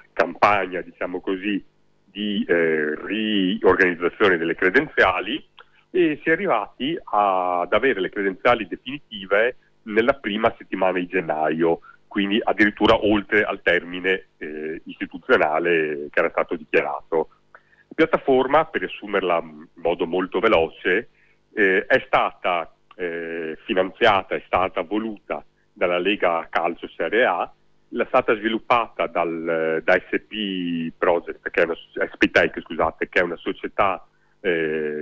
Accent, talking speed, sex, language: native, 125 wpm, male, Italian